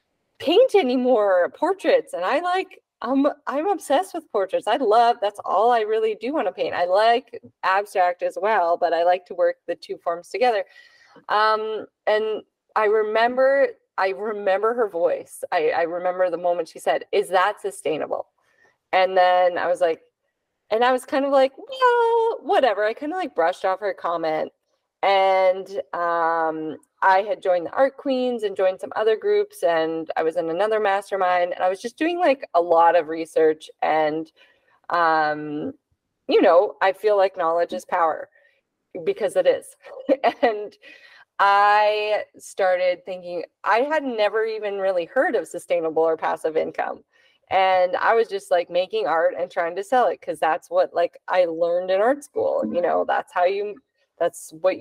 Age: 20-39